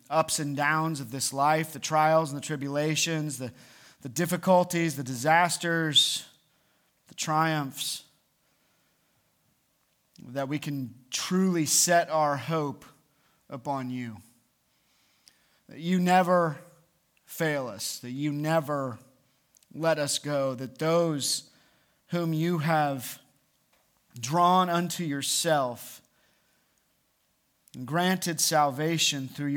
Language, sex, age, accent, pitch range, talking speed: English, male, 30-49, American, 130-160 Hz, 100 wpm